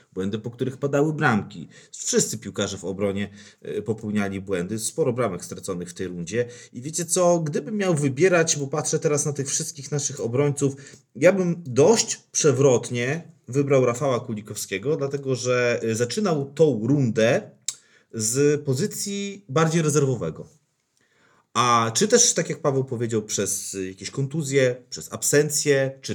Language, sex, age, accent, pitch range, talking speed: Polish, male, 30-49, native, 115-155 Hz, 140 wpm